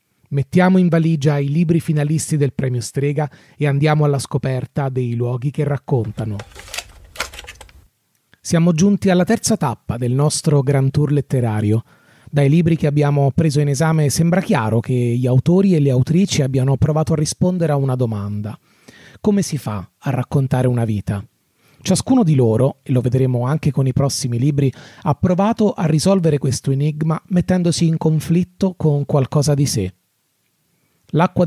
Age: 30-49